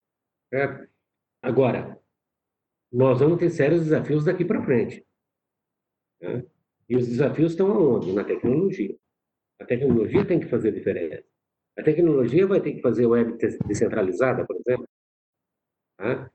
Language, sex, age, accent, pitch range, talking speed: Portuguese, male, 50-69, Brazilian, 120-155 Hz, 130 wpm